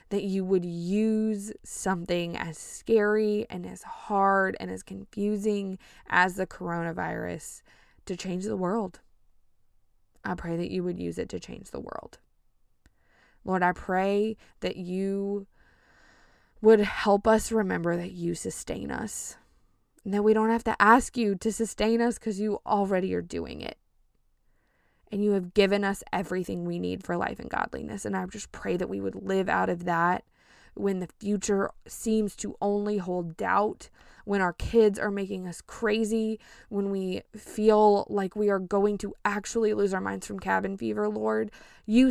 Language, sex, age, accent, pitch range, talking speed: English, female, 20-39, American, 175-210 Hz, 165 wpm